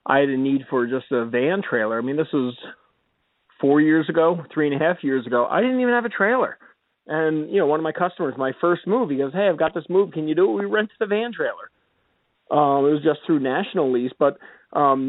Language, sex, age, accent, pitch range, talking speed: English, male, 40-59, American, 140-205 Hz, 250 wpm